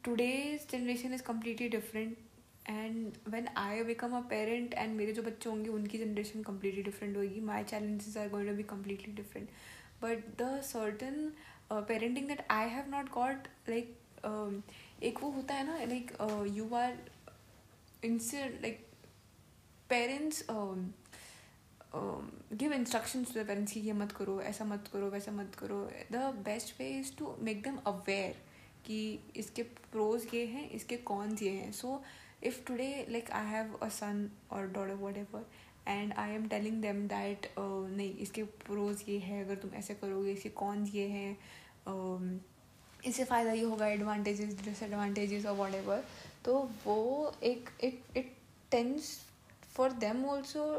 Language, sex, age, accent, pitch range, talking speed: Hindi, female, 10-29, native, 205-240 Hz, 160 wpm